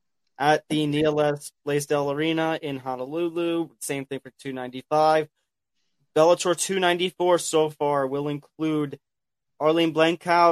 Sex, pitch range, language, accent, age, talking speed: male, 140-165 Hz, English, American, 30-49, 110 wpm